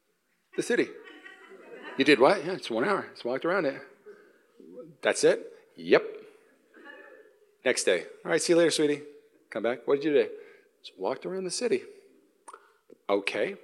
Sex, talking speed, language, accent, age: male, 165 wpm, English, American, 40-59